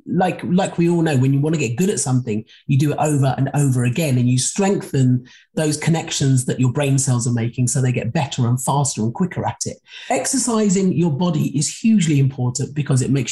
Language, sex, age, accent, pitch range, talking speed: English, male, 40-59, British, 135-195 Hz, 225 wpm